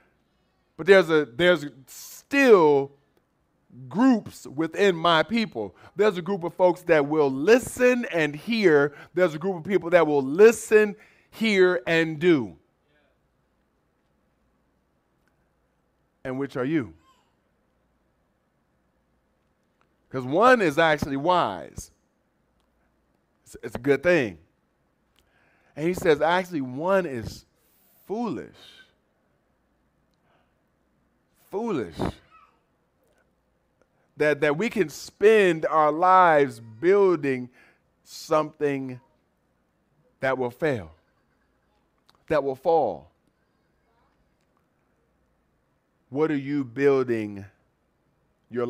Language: English